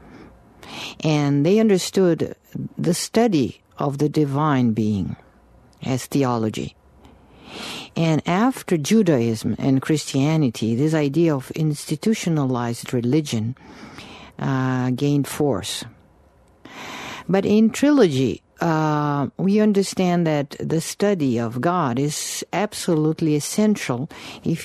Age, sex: 50-69, female